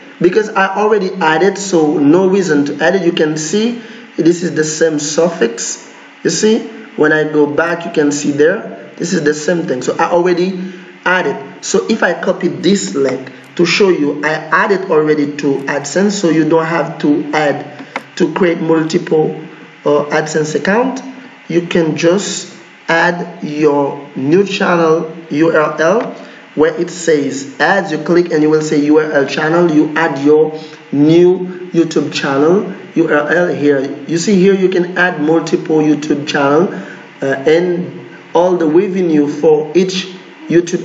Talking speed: 160 wpm